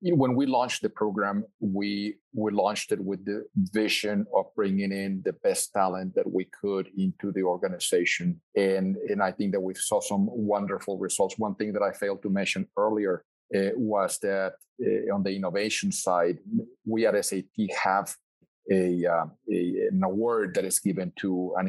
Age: 40-59